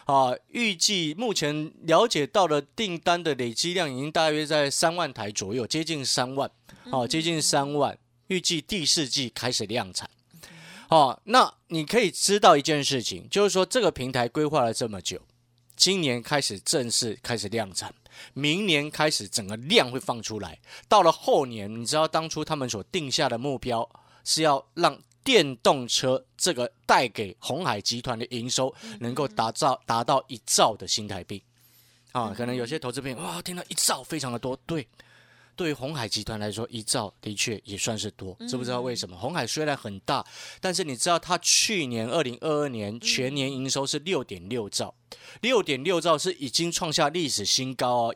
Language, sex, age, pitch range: Chinese, male, 30-49, 115-155 Hz